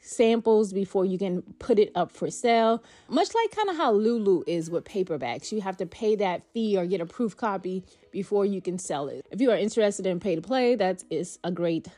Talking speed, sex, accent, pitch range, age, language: 230 wpm, female, American, 185-220 Hz, 20-39, English